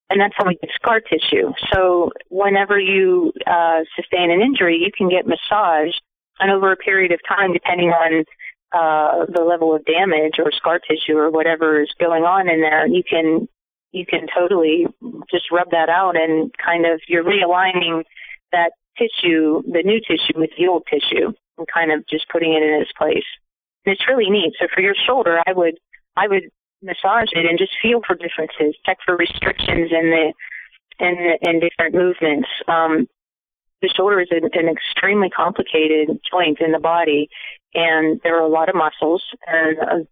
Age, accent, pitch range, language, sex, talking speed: 30-49, American, 160-180 Hz, English, female, 185 wpm